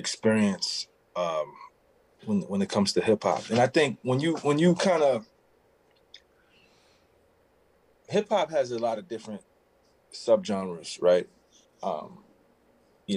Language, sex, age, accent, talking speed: English, male, 30-49, American, 130 wpm